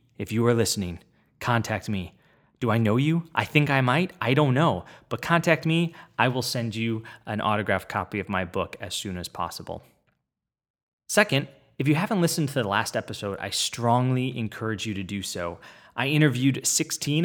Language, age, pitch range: English, 20-39, 105-135 Hz